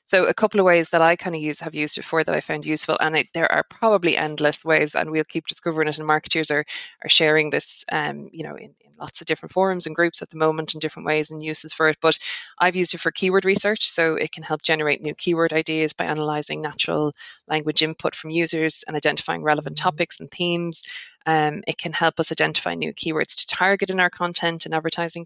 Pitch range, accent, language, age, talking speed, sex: 155-175 Hz, Irish, English, 20-39, 240 wpm, female